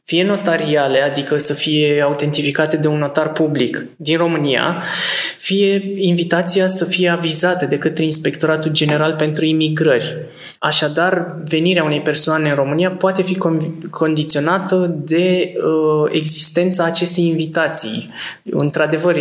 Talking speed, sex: 115 wpm, male